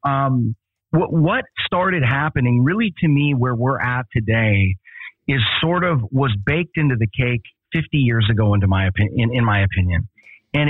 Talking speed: 175 wpm